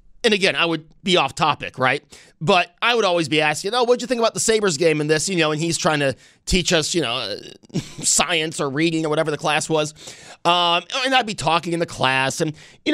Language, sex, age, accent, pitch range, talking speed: English, male, 30-49, American, 150-195 Hz, 240 wpm